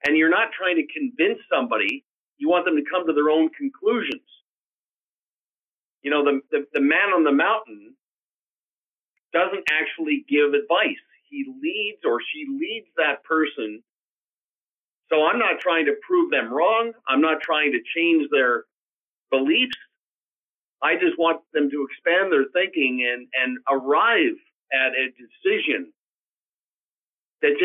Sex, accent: male, American